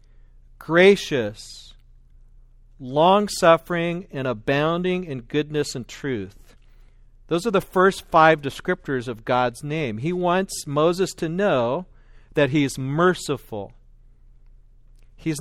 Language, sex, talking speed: English, male, 105 wpm